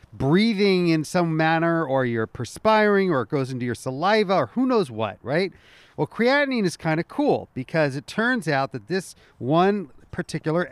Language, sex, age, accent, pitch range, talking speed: English, male, 40-59, American, 140-200 Hz, 180 wpm